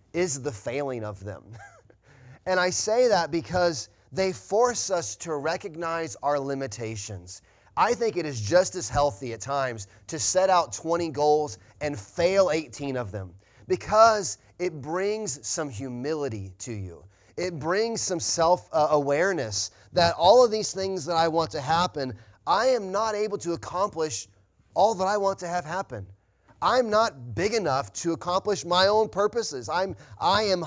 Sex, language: male, English